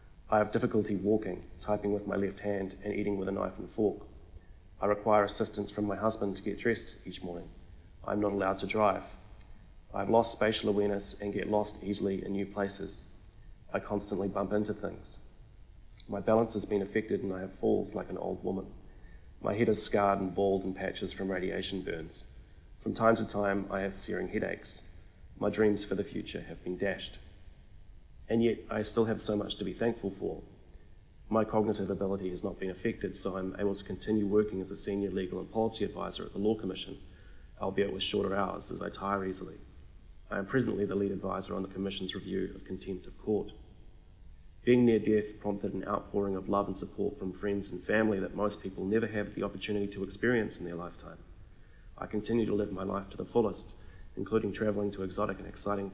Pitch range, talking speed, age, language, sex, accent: 95-105 Hz, 200 wpm, 30-49, English, male, Australian